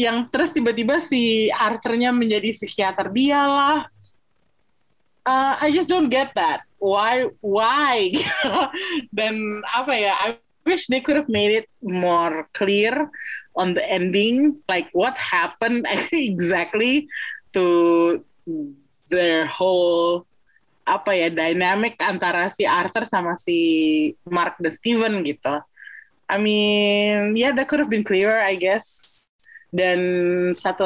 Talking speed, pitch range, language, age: 125 wpm, 180-270 Hz, Indonesian, 20-39